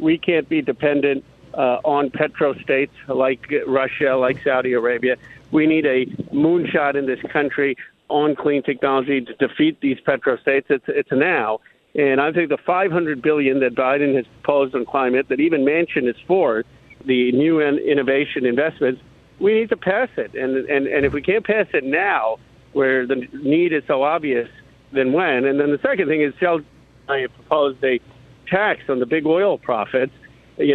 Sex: male